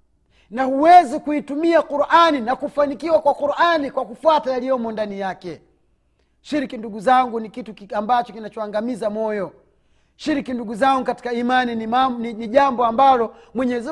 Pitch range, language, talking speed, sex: 220-300 Hz, Swahili, 140 wpm, male